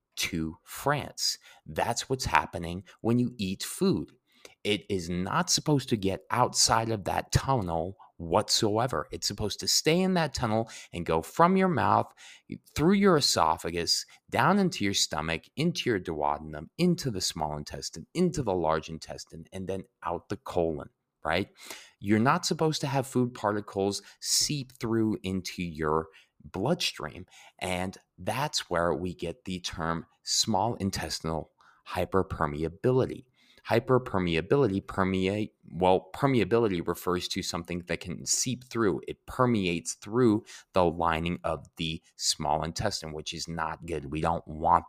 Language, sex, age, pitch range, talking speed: English, male, 30-49, 85-115 Hz, 140 wpm